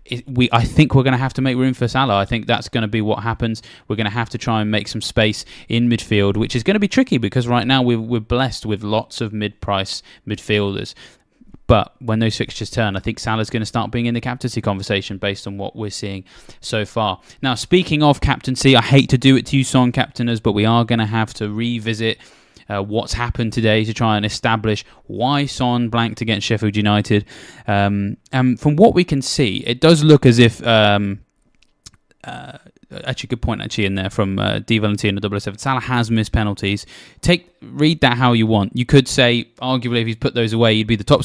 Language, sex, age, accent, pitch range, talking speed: English, male, 20-39, British, 105-130 Hz, 225 wpm